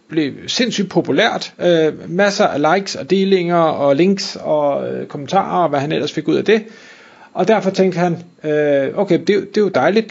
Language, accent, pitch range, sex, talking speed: Danish, native, 150-195 Hz, male, 195 wpm